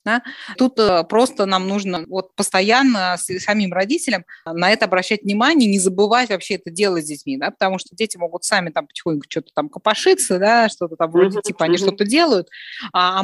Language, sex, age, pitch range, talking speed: Russian, female, 20-39, 185-240 Hz, 175 wpm